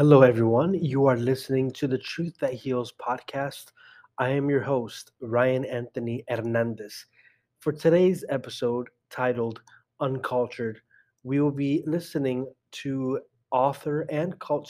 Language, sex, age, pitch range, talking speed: English, male, 30-49, 120-140 Hz, 125 wpm